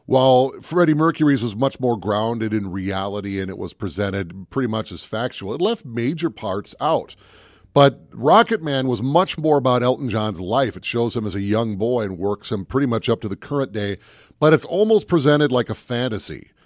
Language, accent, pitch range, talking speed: English, American, 110-150 Hz, 200 wpm